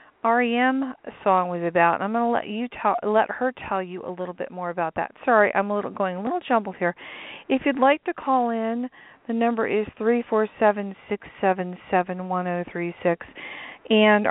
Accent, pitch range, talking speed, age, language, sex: American, 180-235 Hz, 220 wpm, 40-59, English, female